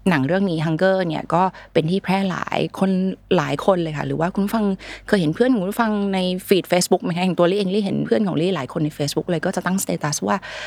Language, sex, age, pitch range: Thai, female, 20-39, 170-215 Hz